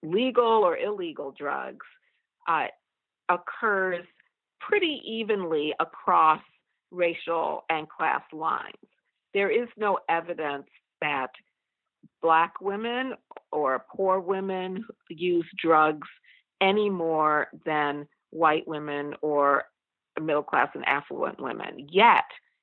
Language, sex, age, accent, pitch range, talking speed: English, female, 50-69, American, 160-230 Hz, 95 wpm